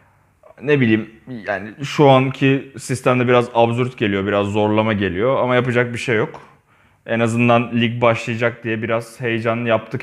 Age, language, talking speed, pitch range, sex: 30-49, Turkish, 150 wpm, 105-130 Hz, male